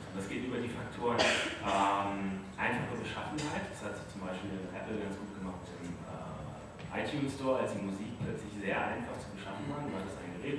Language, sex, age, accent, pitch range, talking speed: German, male, 30-49, German, 95-110 Hz, 205 wpm